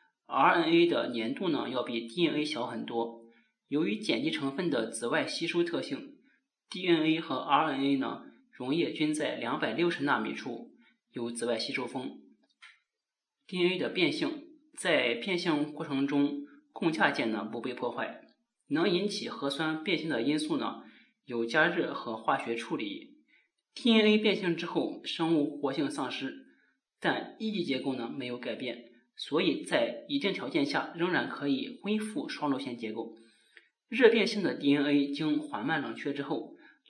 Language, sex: Chinese, male